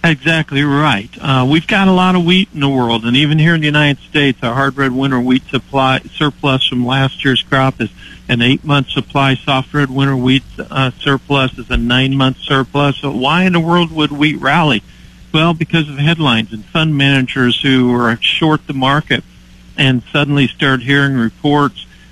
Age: 50-69